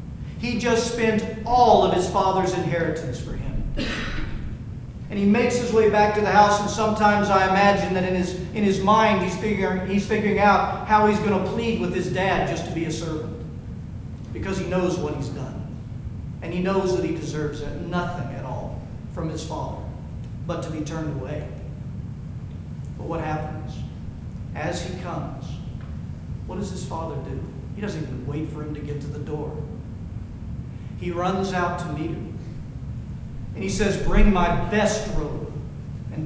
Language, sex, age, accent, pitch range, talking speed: English, male, 40-59, American, 165-215 Hz, 175 wpm